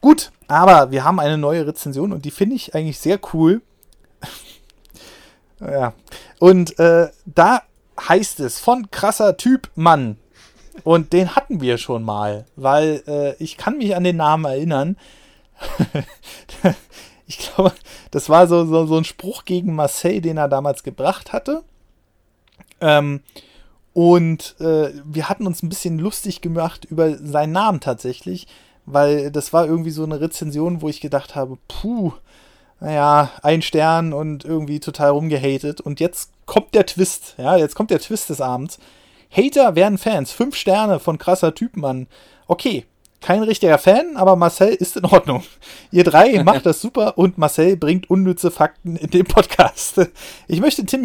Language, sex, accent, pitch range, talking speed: German, male, German, 150-190 Hz, 155 wpm